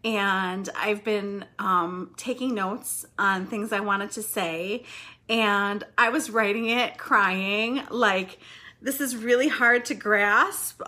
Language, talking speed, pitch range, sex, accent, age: English, 140 wpm, 215-290 Hz, female, American, 30-49